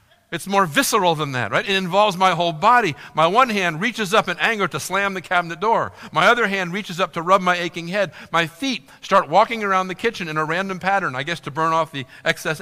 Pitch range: 125-190 Hz